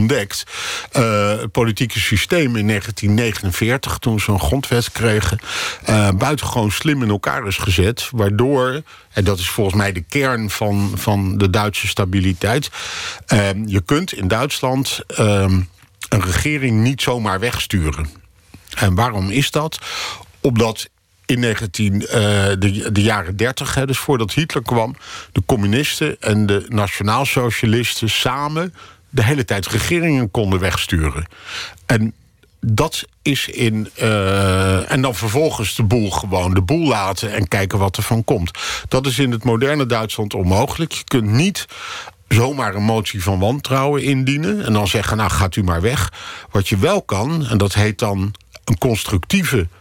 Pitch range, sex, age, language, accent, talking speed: 100-125 Hz, male, 50-69, Dutch, Dutch, 150 wpm